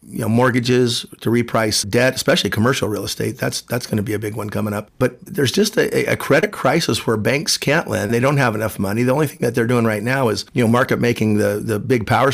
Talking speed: 260 wpm